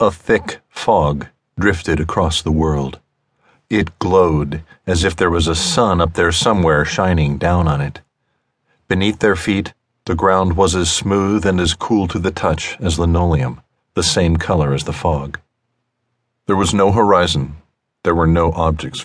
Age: 50-69